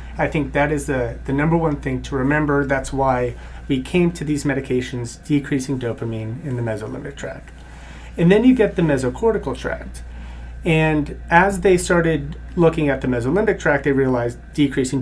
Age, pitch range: 30-49, 125-155 Hz